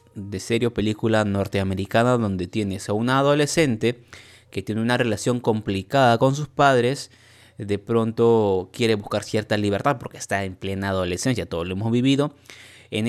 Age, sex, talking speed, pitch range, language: 20-39, male, 150 wpm, 100-120 Hz, Spanish